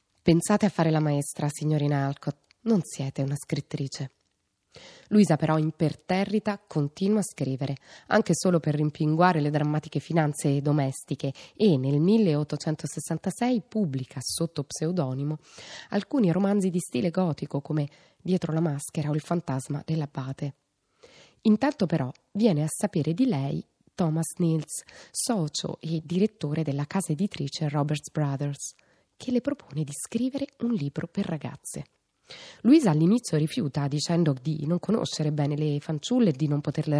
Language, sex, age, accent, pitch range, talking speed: Italian, female, 20-39, native, 145-195 Hz, 135 wpm